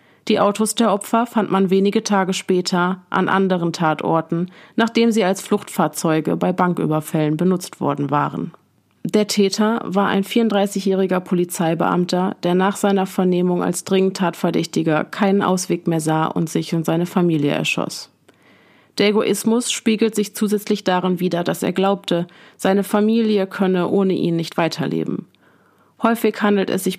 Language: German